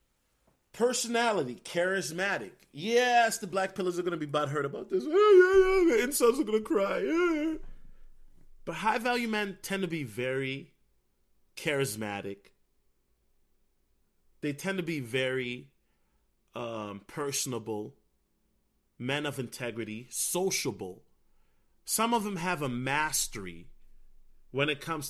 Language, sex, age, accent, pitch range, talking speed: English, male, 30-49, American, 120-195 Hz, 110 wpm